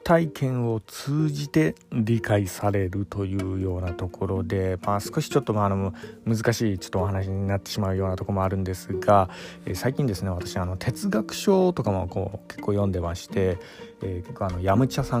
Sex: male